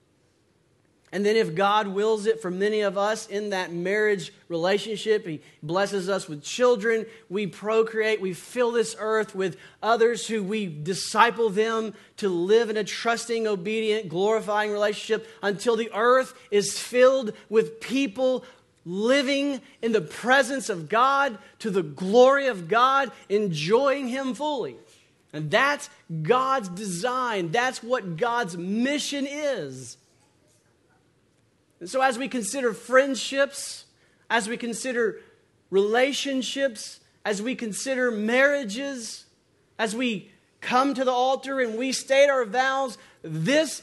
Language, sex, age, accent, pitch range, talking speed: English, male, 40-59, American, 200-260 Hz, 130 wpm